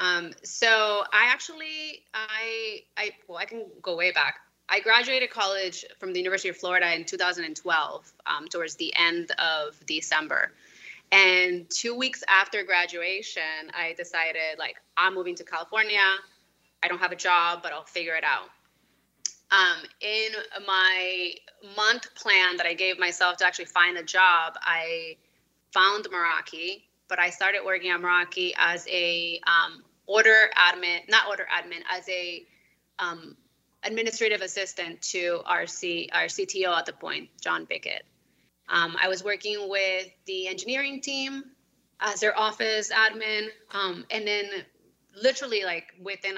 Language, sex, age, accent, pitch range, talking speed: English, female, 20-39, American, 170-210 Hz, 145 wpm